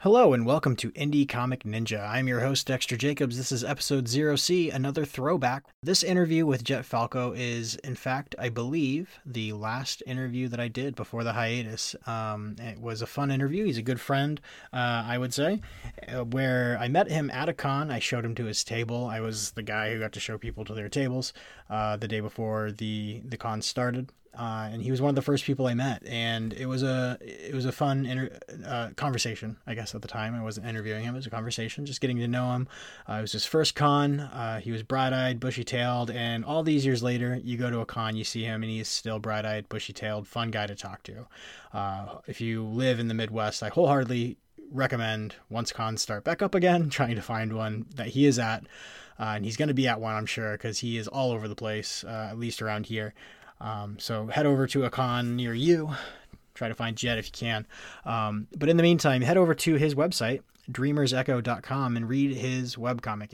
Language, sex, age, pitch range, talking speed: English, male, 30-49, 110-135 Hz, 225 wpm